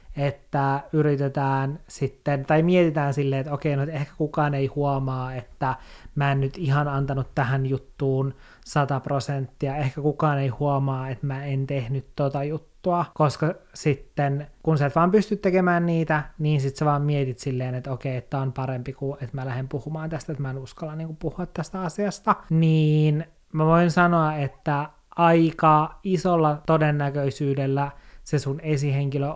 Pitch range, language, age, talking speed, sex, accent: 140-160 Hz, Finnish, 20-39, 160 wpm, male, native